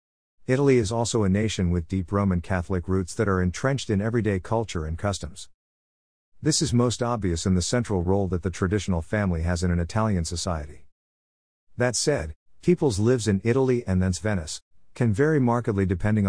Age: 50-69